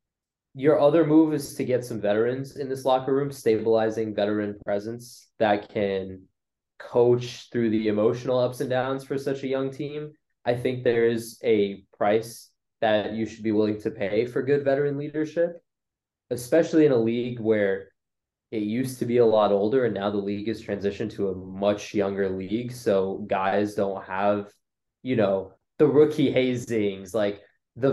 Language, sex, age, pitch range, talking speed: English, male, 20-39, 105-135 Hz, 170 wpm